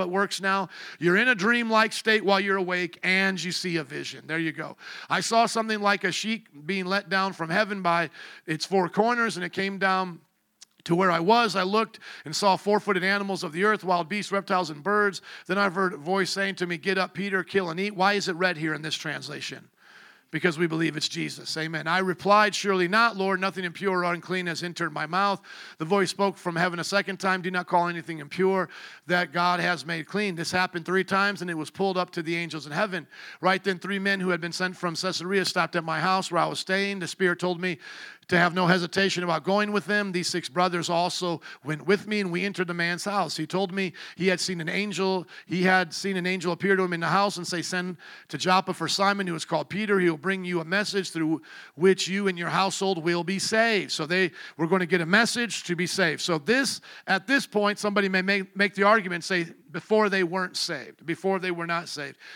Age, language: 50-69, English